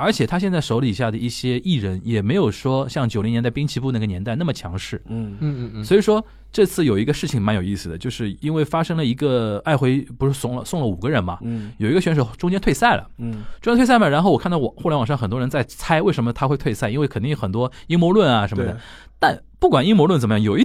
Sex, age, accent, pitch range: male, 20-39, native, 105-150 Hz